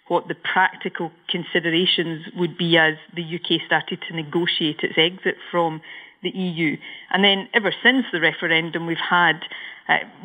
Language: English